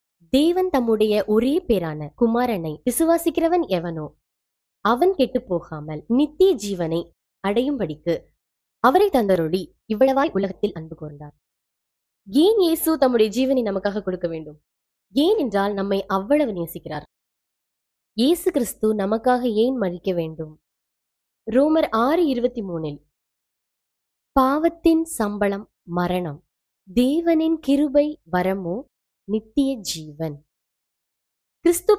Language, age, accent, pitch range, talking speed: Tamil, 20-39, native, 180-280 Hz, 90 wpm